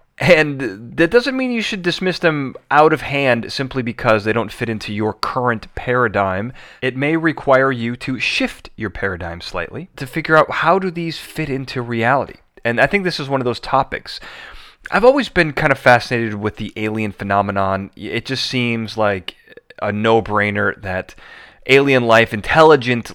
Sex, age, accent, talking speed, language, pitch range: male, 30-49, American, 175 wpm, English, 110-155 Hz